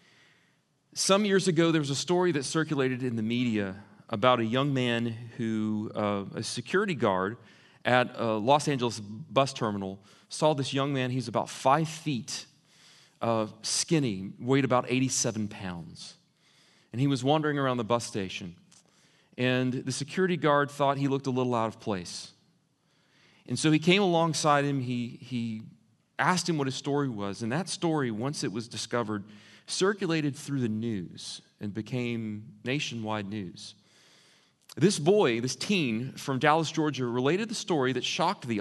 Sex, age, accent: male, 30-49, American